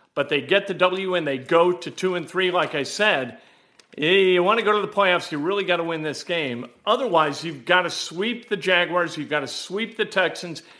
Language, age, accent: English, 50-69, American